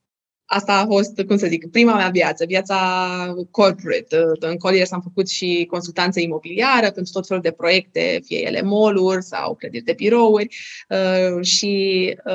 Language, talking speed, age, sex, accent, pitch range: Romanian, 150 wpm, 20-39, female, native, 180-215 Hz